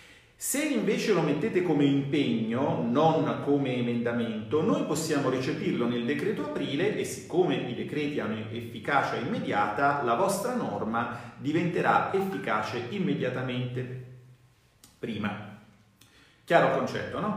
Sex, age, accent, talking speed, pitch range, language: male, 40-59, native, 110 wpm, 120-180 Hz, Italian